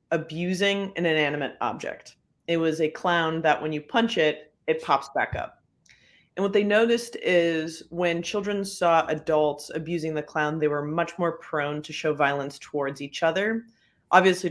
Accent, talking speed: American, 170 wpm